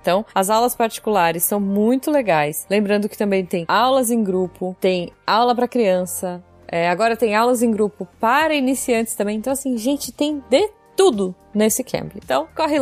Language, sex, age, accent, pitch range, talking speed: Portuguese, female, 10-29, Brazilian, 200-260 Hz, 170 wpm